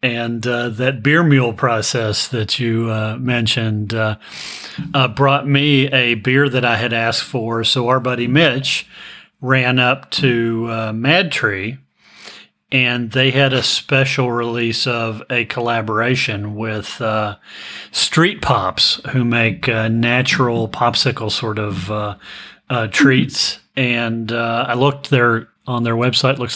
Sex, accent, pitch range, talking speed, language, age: male, American, 115-135 Hz, 140 wpm, English, 30-49